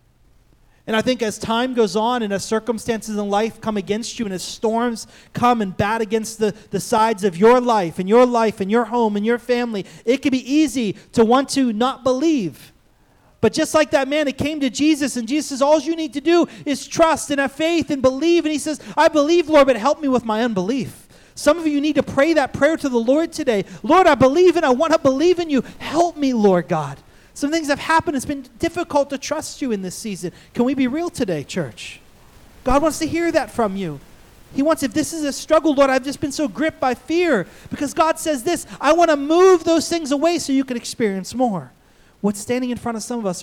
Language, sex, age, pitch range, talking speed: English, male, 30-49, 200-290 Hz, 240 wpm